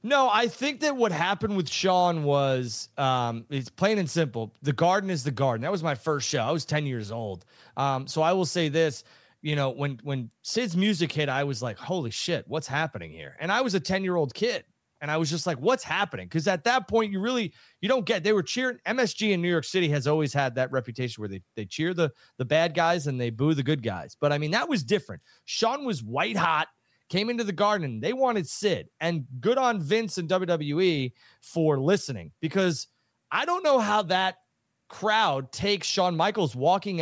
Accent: American